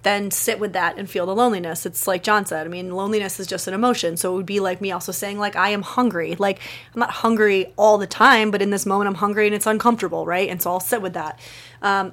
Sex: female